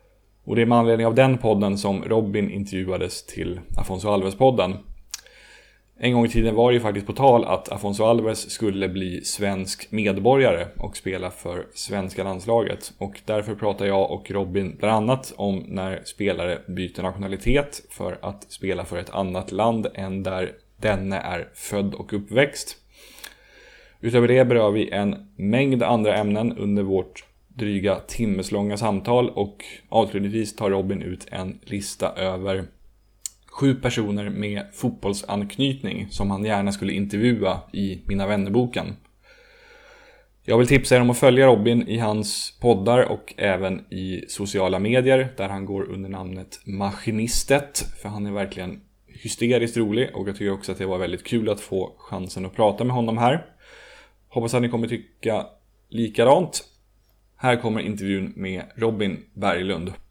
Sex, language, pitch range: male, Swedish, 95-120 Hz